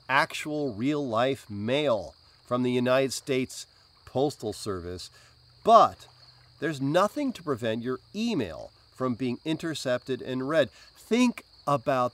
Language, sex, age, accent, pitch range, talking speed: English, male, 40-59, American, 125-205 Hz, 115 wpm